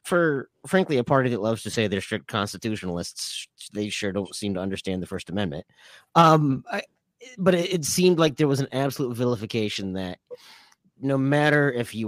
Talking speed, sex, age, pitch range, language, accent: 185 wpm, male, 30-49, 100-135 Hz, English, American